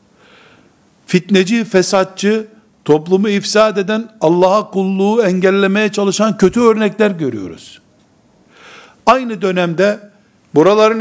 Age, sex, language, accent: 60-79, male, Turkish, native